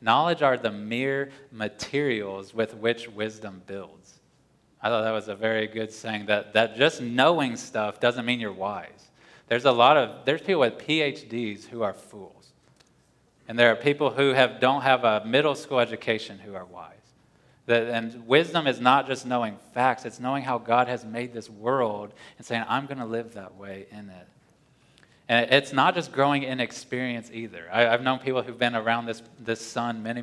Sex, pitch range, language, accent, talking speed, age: male, 110-125 Hz, English, American, 190 wpm, 20-39